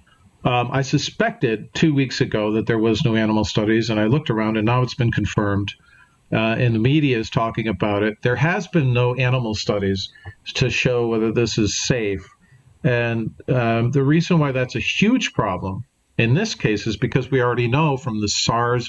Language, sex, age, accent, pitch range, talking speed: English, male, 50-69, American, 110-135 Hz, 195 wpm